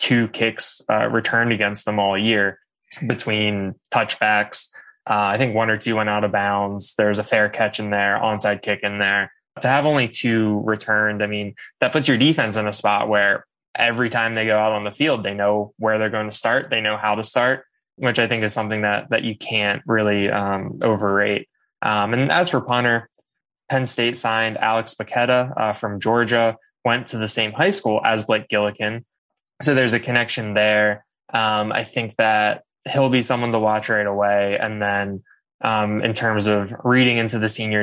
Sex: male